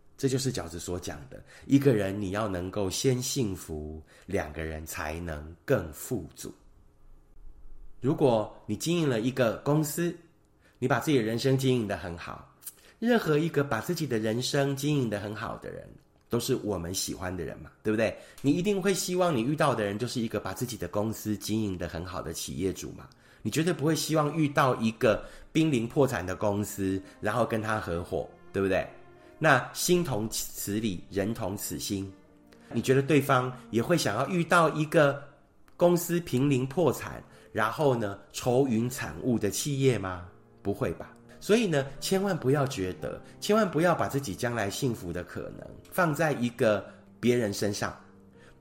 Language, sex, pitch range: Chinese, male, 100-140 Hz